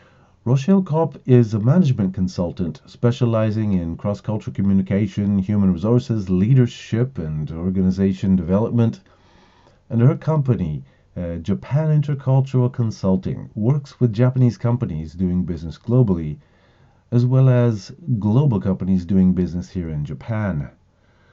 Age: 50-69